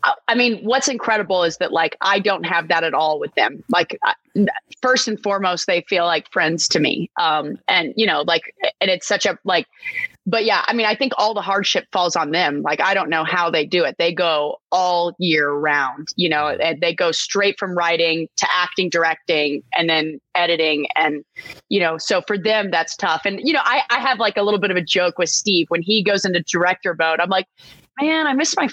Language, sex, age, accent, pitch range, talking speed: English, female, 30-49, American, 160-210 Hz, 230 wpm